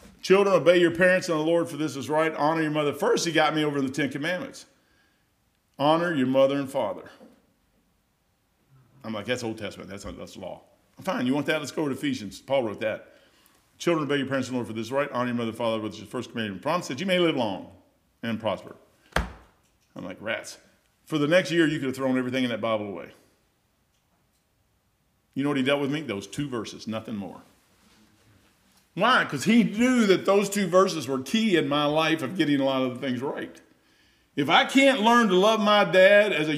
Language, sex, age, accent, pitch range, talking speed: English, male, 50-69, American, 135-215 Hz, 220 wpm